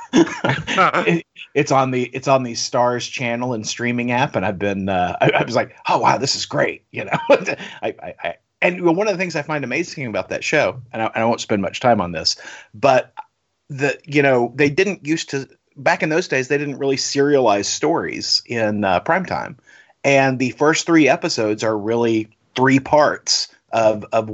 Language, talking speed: English, 200 wpm